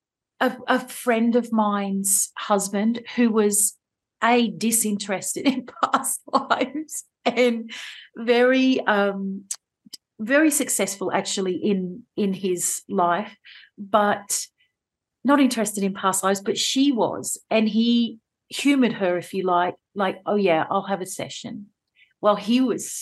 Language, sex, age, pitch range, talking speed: English, female, 40-59, 200-260 Hz, 130 wpm